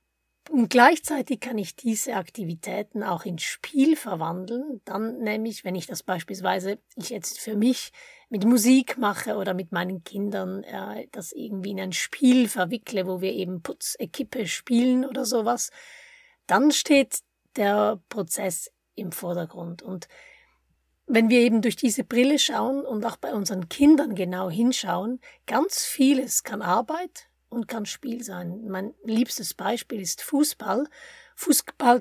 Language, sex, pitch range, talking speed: German, female, 195-260 Hz, 140 wpm